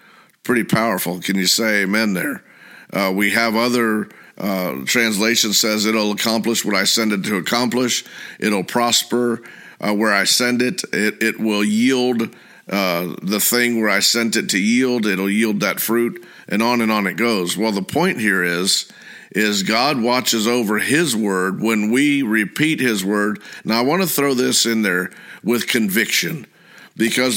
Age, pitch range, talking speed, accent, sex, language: 50-69, 100-120 Hz, 175 wpm, American, male, English